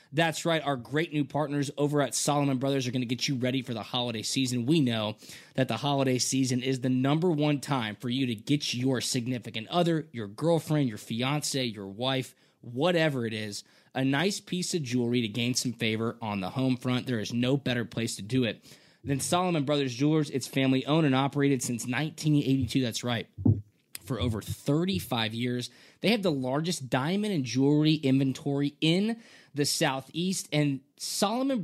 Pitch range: 120-155 Hz